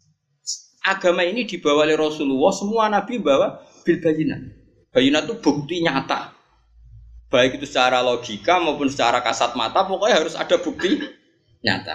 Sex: male